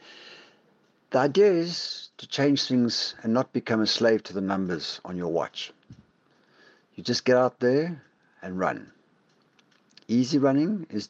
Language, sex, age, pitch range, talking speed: English, male, 60-79, 105-130 Hz, 145 wpm